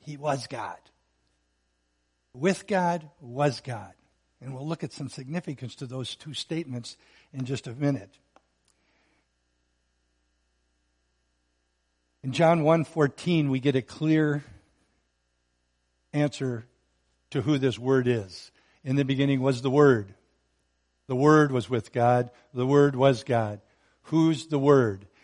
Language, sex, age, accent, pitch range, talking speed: English, male, 60-79, American, 105-155 Hz, 125 wpm